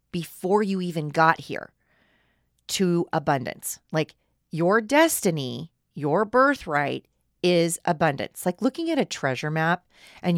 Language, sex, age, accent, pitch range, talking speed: English, female, 40-59, American, 165-235 Hz, 120 wpm